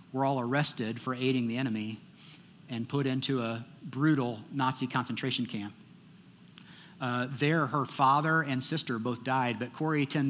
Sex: male